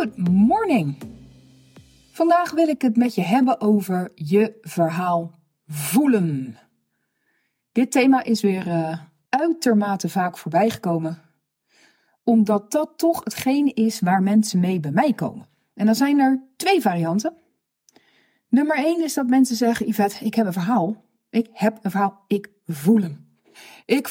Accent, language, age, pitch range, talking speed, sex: Dutch, Dutch, 40-59, 170-245 Hz, 145 wpm, female